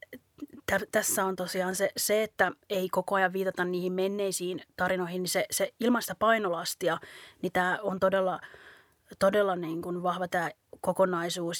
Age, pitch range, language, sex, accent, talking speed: 20-39, 180-205 Hz, Finnish, female, native, 145 wpm